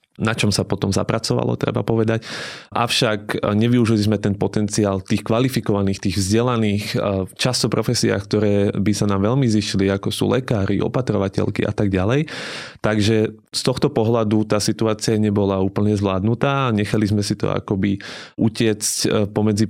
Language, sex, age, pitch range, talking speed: Slovak, male, 20-39, 100-115 Hz, 145 wpm